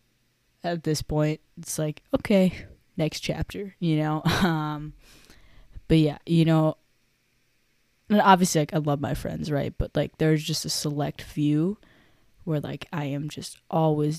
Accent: American